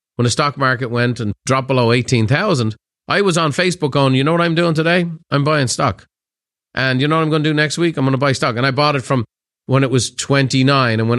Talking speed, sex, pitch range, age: 265 wpm, male, 120-155 Hz, 30-49